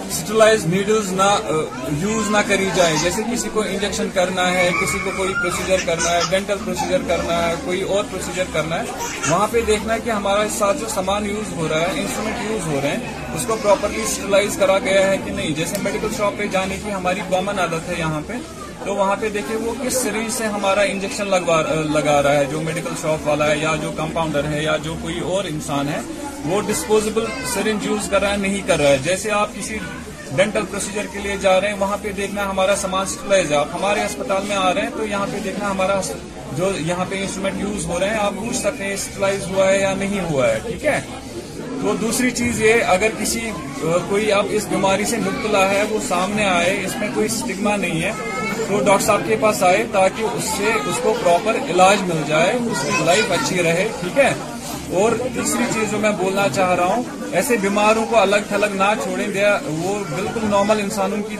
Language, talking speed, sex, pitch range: Urdu, 210 wpm, male, 185-215 Hz